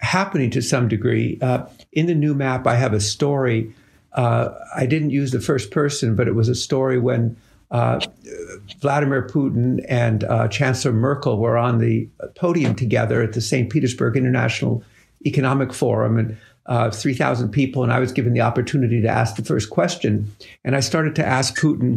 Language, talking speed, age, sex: English, 180 wpm, 60-79, male